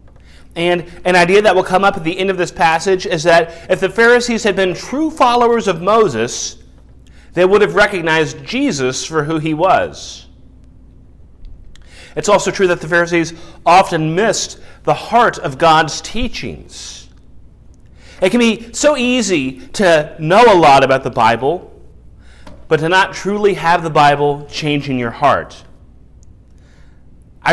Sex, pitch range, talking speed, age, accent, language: male, 130-175 Hz, 155 wpm, 30-49, American, English